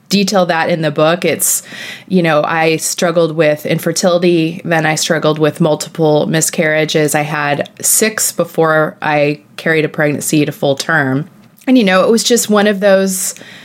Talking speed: 165 wpm